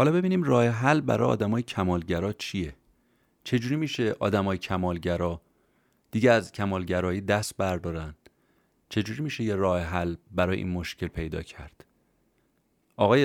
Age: 30-49